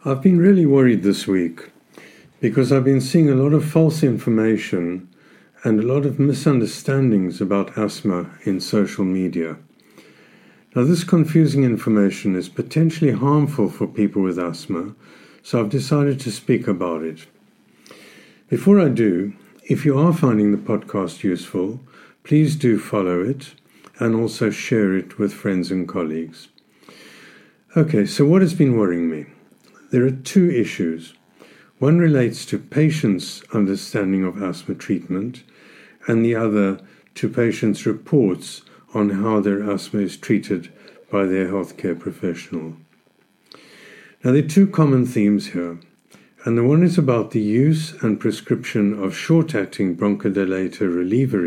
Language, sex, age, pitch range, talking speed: English, male, 50-69, 95-140 Hz, 140 wpm